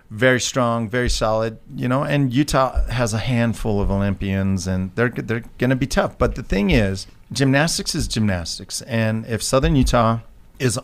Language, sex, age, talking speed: English, male, 40-59, 170 wpm